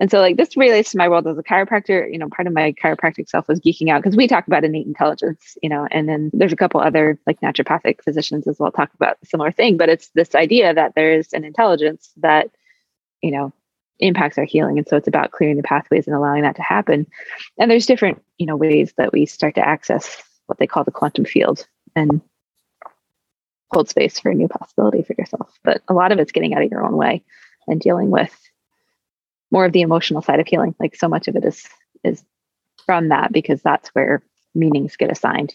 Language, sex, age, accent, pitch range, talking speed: English, female, 20-39, American, 150-185 Hz, 225 wpm